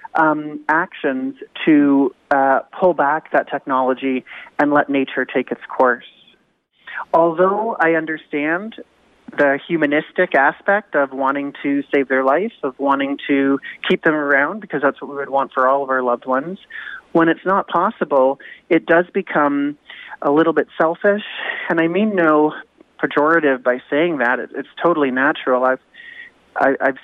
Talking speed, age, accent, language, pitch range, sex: 150 wpm, 30-49, American, English, 140-170 Hz, male